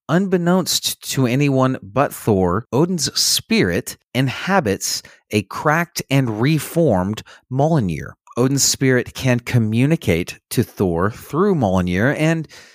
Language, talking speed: English, 105 wpm